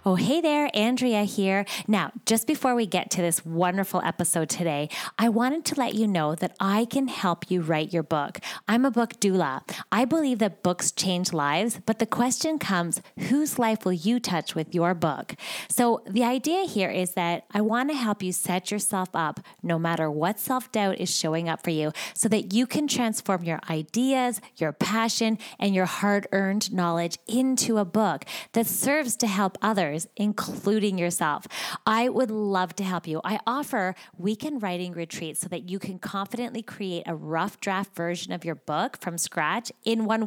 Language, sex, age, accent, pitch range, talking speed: English, female, 30-49, American, 175-225 Hz, 185 wpm